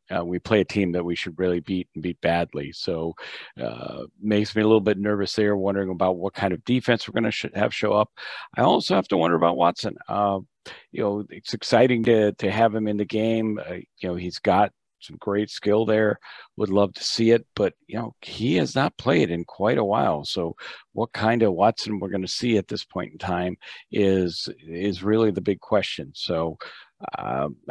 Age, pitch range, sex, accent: 50-69, 85-105 Hz, male, American